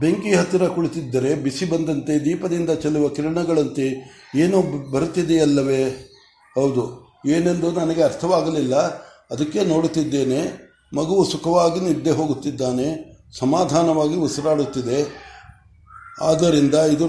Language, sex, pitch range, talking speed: Kannada, male, 140-165 Hz, 85 wpm